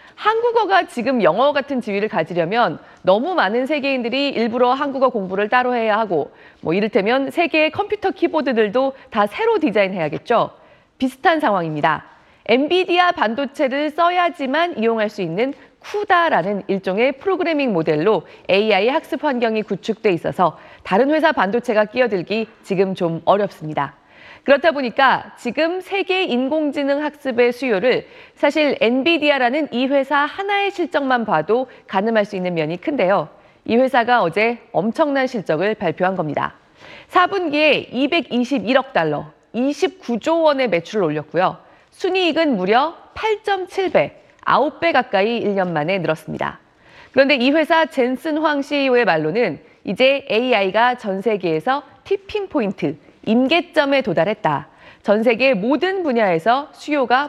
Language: Korean